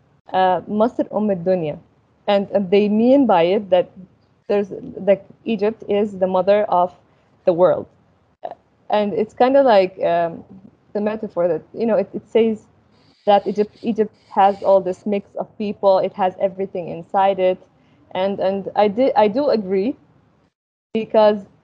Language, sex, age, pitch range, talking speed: English, female, 20-39, 185-220 Hz, 145 wpm